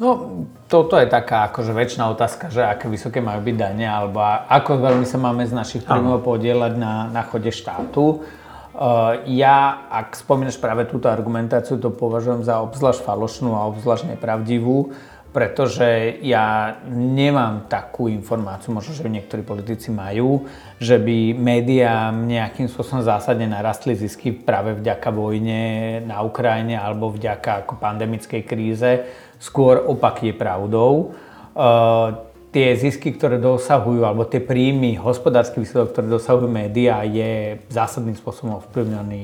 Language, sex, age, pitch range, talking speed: Slovak, male, 30-49, 110-125 Hz, 140 wpm